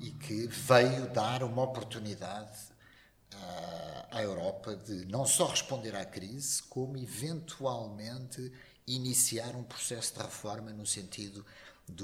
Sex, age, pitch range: male, 50-69, 105-140 Hz